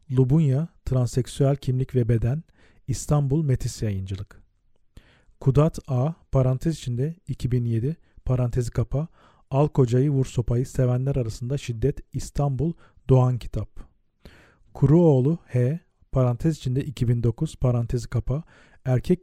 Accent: native